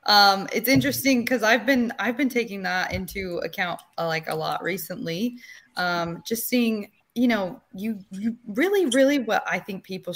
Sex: female